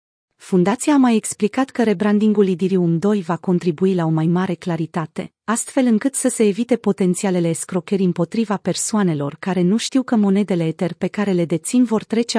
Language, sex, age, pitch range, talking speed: Romanian, female, 30-49, 175-220 Hz, 175 wpm